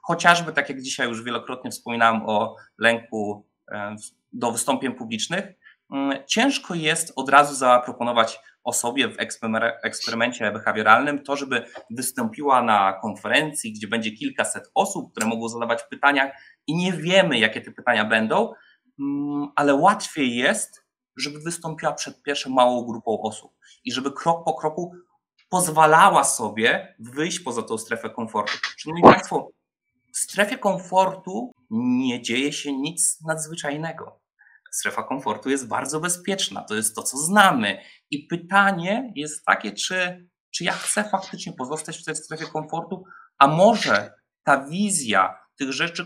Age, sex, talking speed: 20-39, male, 135 wpm